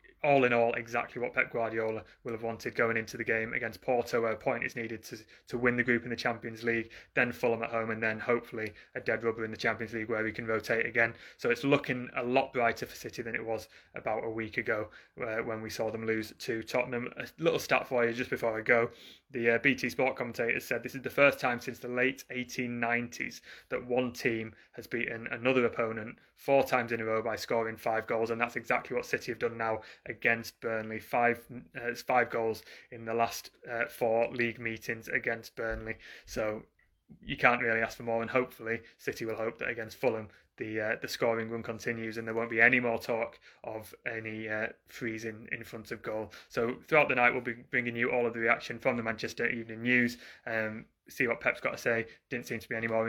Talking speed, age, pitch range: 230 wpm, 20-39, 115-120 Hz